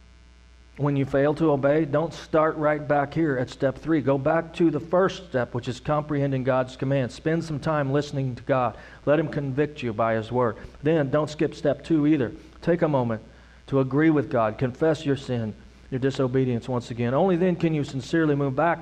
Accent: American